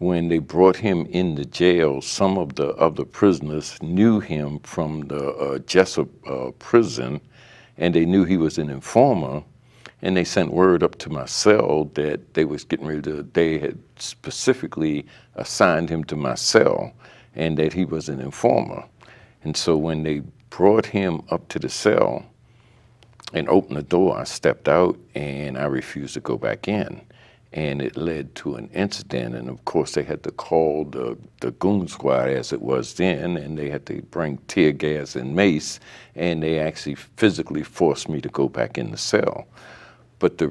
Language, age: English, 60-79